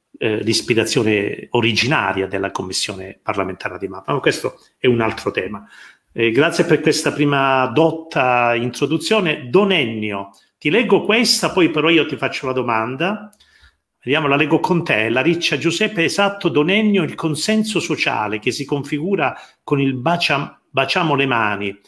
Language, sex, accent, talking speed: Italian, male, native, 155 wpm